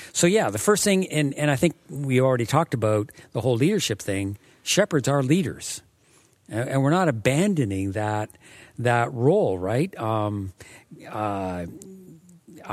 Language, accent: English, American